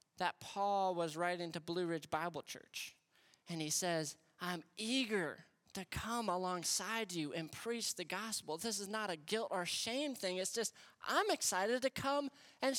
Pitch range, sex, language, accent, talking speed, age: 180-250 Hz, male, English, American, 175 wpm, 20-39